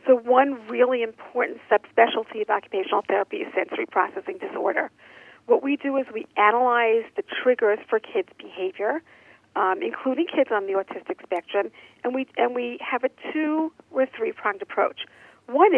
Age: 50-69